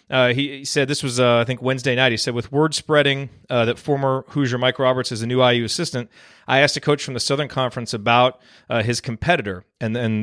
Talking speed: 235 wpm